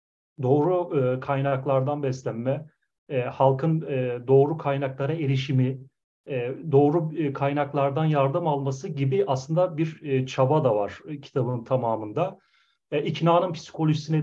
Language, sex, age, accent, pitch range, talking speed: Turkish, male, 40-59, native, 135-160 Hz, 90 wpm